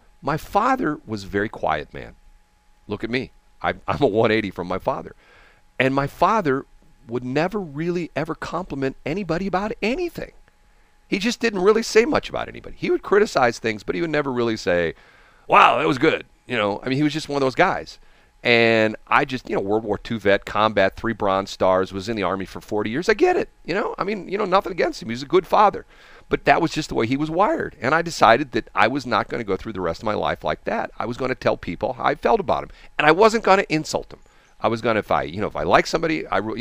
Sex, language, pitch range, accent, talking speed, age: male, English, 110-175 Hz, American, 255 wpm, 40-59